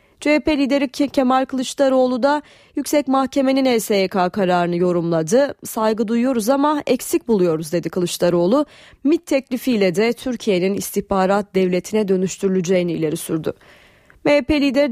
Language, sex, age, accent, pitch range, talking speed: Turkish, female, 30-49, native, 185-260 Hz, 115 wpm